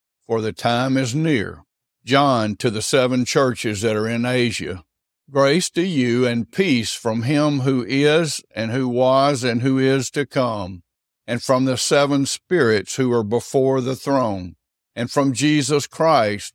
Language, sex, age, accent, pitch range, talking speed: English, male, 60-79, American, 110-140 Hz, 165 wpm